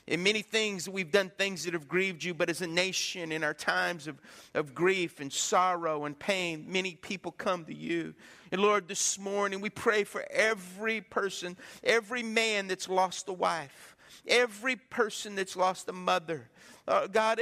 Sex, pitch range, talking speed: male, 195-260 Hz, 175 wpm